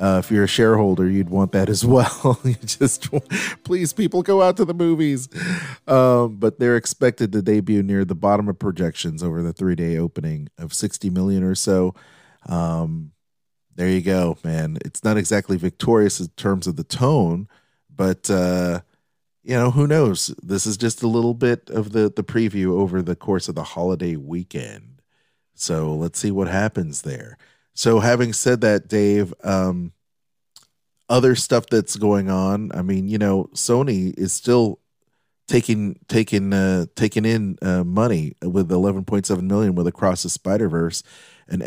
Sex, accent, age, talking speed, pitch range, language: male, American, 40-59, 175 wpm, 90-115 Hz, English